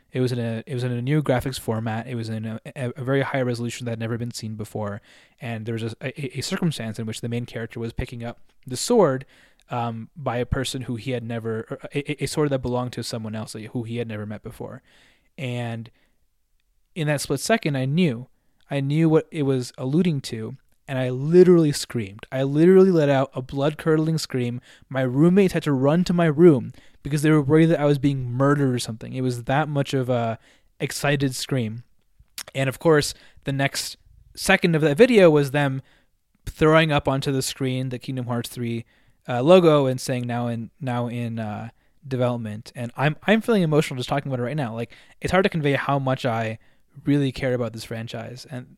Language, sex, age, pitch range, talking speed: English, male, 20-39, 120-145 Hz, 210 wpm